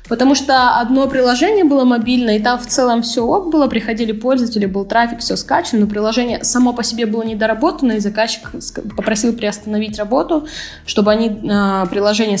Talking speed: 165 wpm